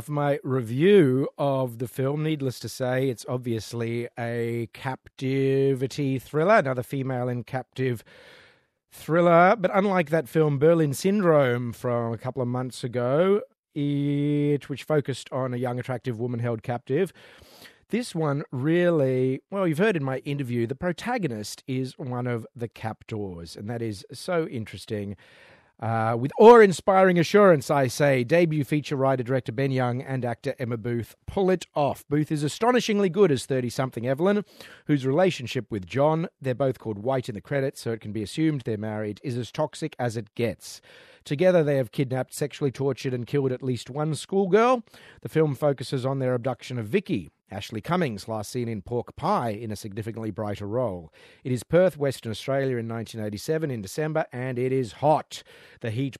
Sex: male